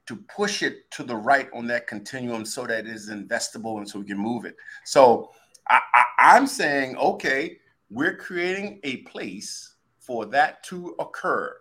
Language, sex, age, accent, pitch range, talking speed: English, male, 50-69, American, 105-150 Hz, 165 wpm